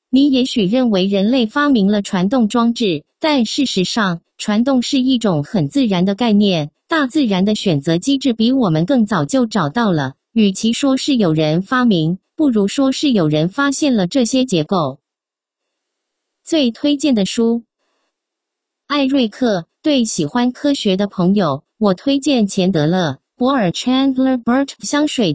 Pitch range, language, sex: 190-270 Hz, English, female